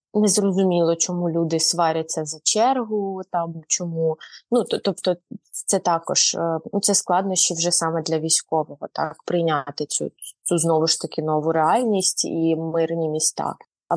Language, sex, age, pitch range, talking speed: Ukrainian, female, 20-39, 165-185 Hz, 140 wpm